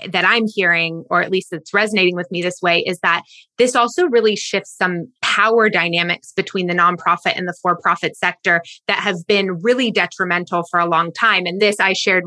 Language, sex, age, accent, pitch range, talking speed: English, female, 20-39, American, 175-205 Hz, 200 wpm